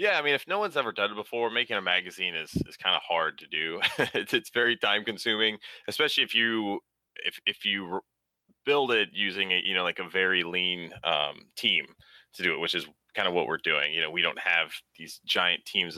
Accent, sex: American, male